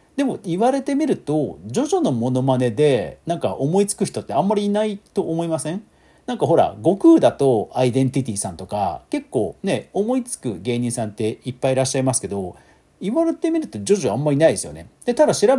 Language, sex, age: Japanese, male, 40-59